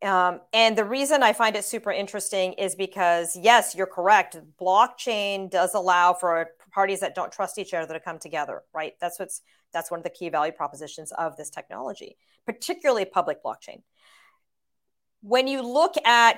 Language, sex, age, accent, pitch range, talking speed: English, female, 40-59, American, 180-225 Hz, 170 wpm